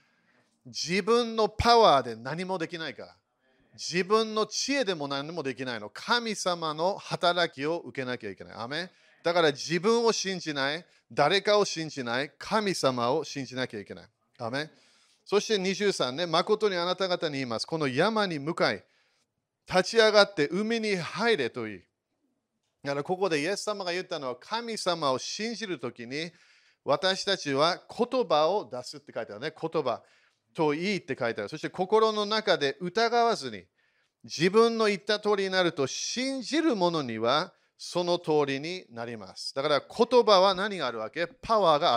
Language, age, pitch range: Japanese, 40-59, 135-210 Hz